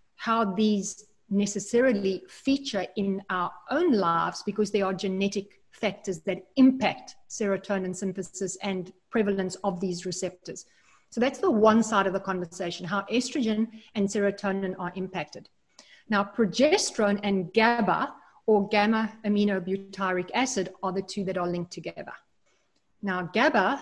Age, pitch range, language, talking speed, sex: 30-49, 185-225 Hz, English, 130 wpm, female